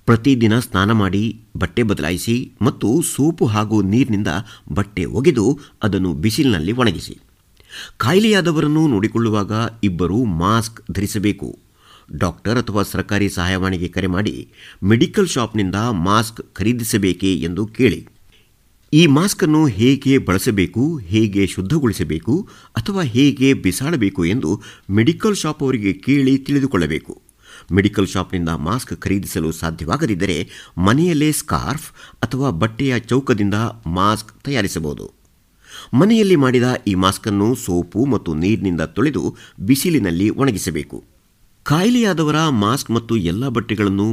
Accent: native